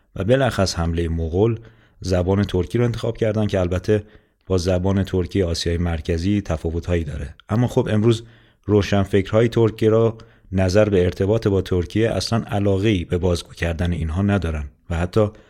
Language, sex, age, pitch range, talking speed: Persian, male, 30-49, 90-110 Hz, 145 wpm